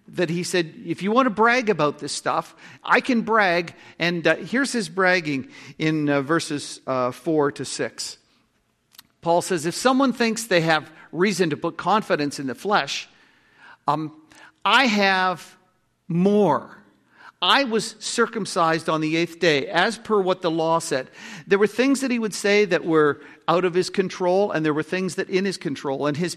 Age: 50-69